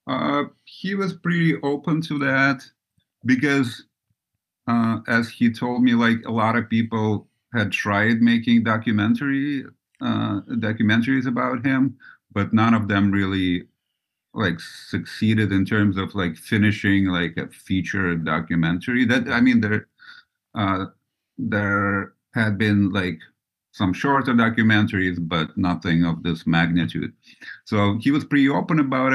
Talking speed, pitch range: 135 wpm, 105-130 Hz